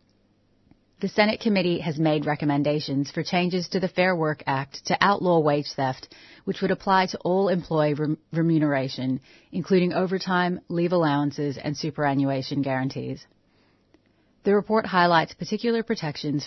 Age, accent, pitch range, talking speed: 30-49, American, 145-175 Hz, 130 wpm